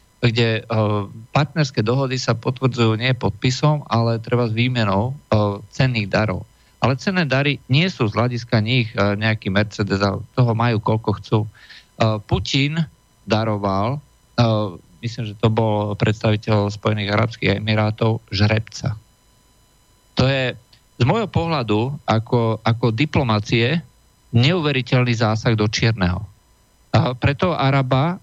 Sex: male